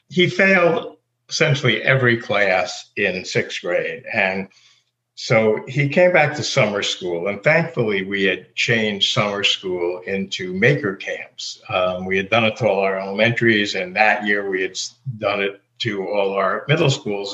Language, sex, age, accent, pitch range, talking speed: English, male, 60-79, American, 110-140 Hz, 165 wpm